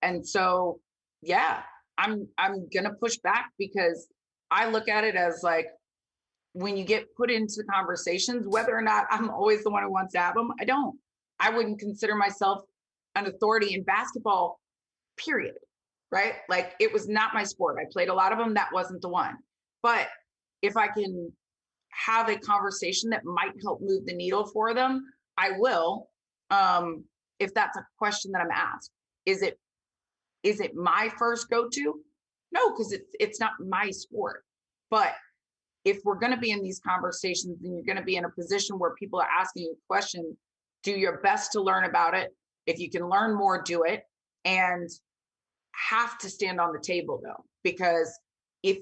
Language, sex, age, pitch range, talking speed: English, female, 30-49, 180-225 Hz, 180 wpm